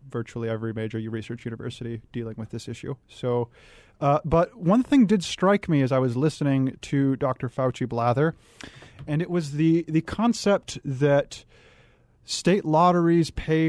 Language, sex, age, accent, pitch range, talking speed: English, male, 30-49, American, 125-155 Hz, 160 wpm